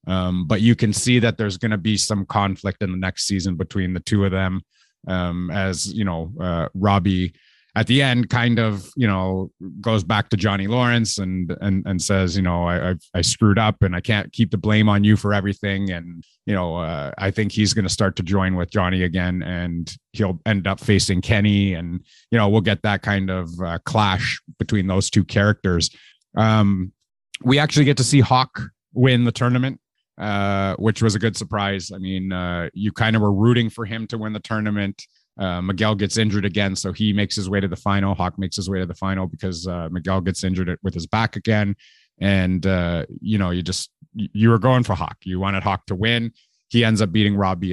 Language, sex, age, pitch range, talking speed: English, male, 30-49, 95-110 Hz, 220 wpm